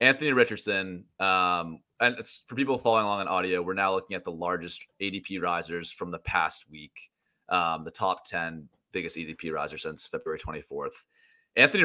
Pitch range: 85-115 Hz